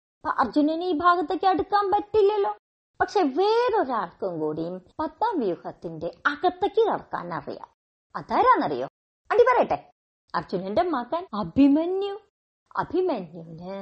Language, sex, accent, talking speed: Malayalam, male, native, 85 wpm